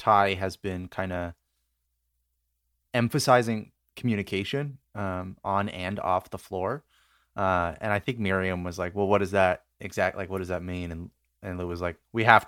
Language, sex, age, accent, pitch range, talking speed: English, male, 20-39, American, 90-120 Hz, 180 wpm